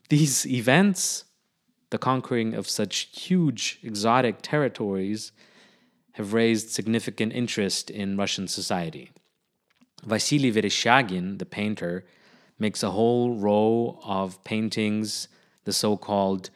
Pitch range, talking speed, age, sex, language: 105-170 Hz, 100 wpm, 30-49, male, English